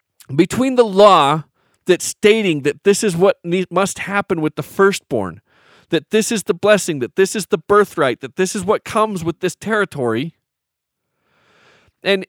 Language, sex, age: English, male, 40-59